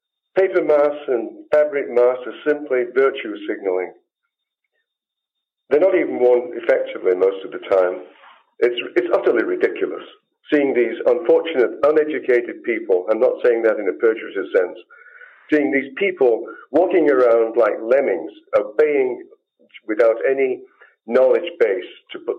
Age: 50-69